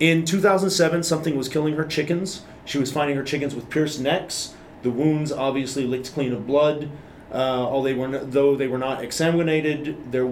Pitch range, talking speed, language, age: 125-155 Hz, 190 wpm, English, 30-49